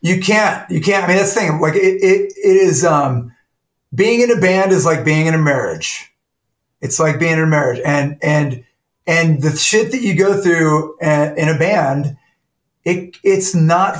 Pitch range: 150-190 Hz